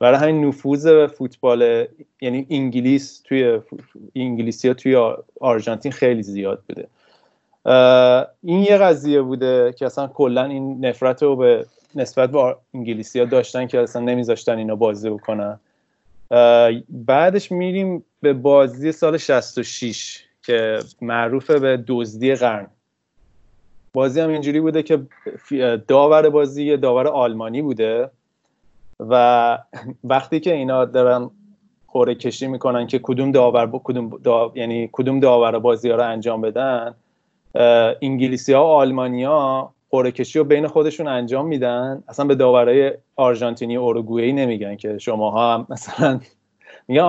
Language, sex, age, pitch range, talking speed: Persian, male, 30-49, 120-145 Hz, 115 wpm